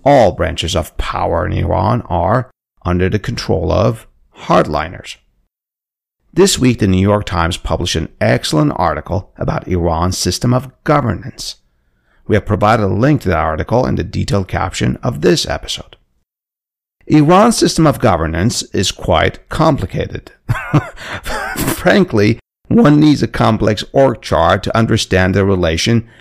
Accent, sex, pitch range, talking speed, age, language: American, male, 90-135 Hz, 135 wpm, 50-69, English